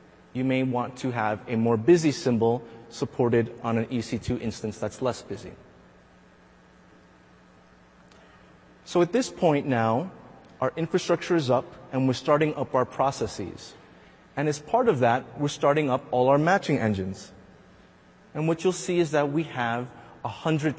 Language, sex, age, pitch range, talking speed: English, male, 30-49, 115-150 Hz, 155 wpm